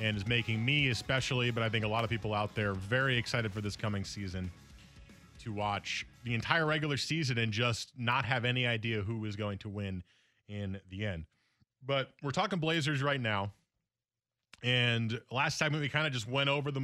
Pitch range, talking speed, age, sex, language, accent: 105-130 Hz, 200 wpm, 20-39, male, English, American